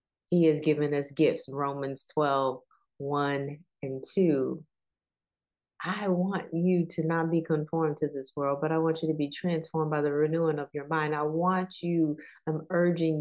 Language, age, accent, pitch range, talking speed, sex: English, 30-49, American, 135-165 Hz, 175 wpm, female